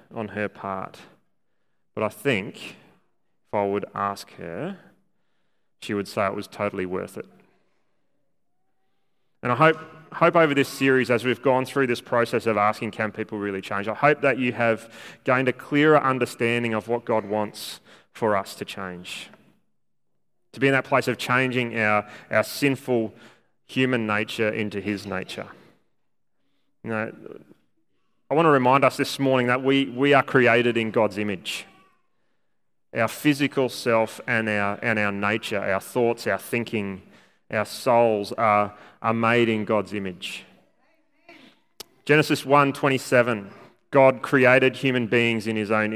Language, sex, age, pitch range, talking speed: English, male, 30-49, 105-130 Hz, 150 wpm